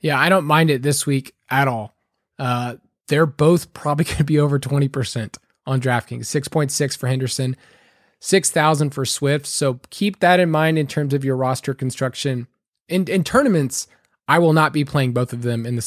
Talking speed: 190 wpm